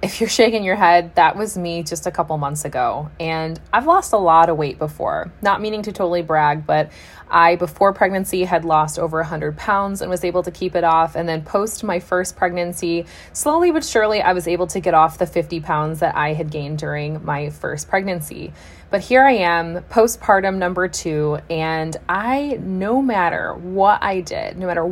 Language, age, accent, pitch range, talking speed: English, 20-39, American, 160-195 Hz, 200 wpm